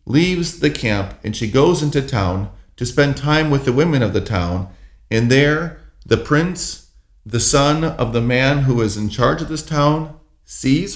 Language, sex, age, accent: English, male, 40-59, American